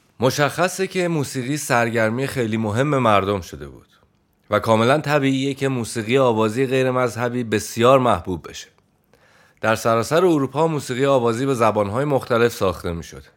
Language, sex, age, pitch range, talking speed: English, male, 30-49, 105-140 Hz, 135 wpm